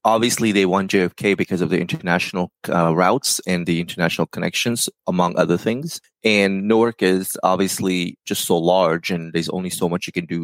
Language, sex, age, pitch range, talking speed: English, male, 20-39, 80-95 Hz, 185 wpm